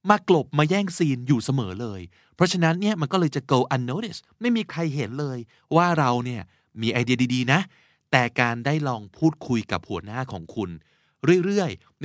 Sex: male